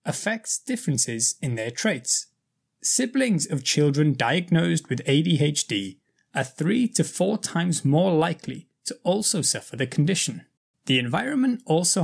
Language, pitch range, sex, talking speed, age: English, 130-185 Hz, male, 130 wpm, 20-39